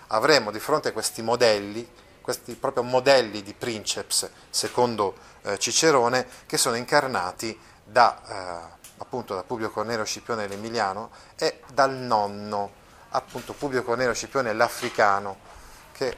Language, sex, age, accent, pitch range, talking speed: Italian, male, 30-49, native, 105-125 Hz, 120 wpm